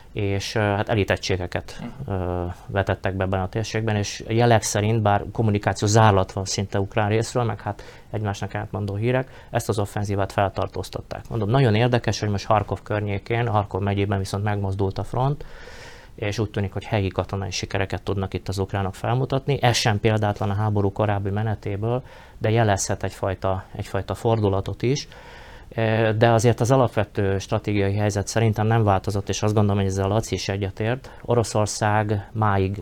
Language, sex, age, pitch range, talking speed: Hungarian, male, 30-49, 100-115 Hz, 155 wpm